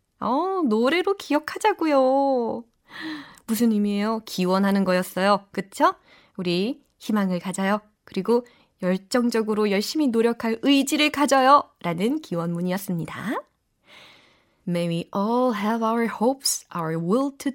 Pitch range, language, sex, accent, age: 185-245 Hz, Korean, female, native, 20-39